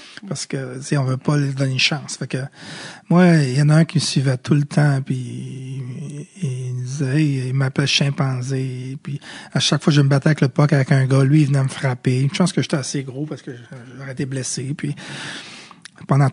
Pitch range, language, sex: 135-160 Hz, French, male